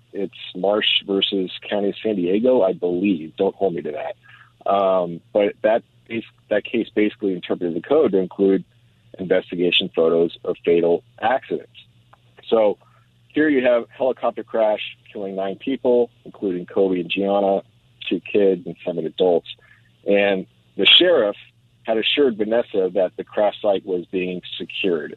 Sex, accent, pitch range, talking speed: male, American, 95-120 Hz, 145 wpm